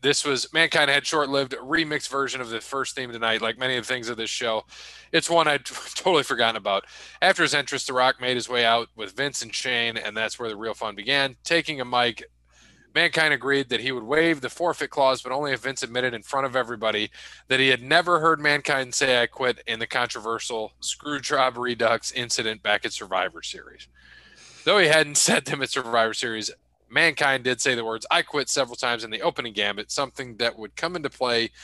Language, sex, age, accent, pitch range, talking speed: English, male, 20-39, American, 110-140 Hz, 215 wpm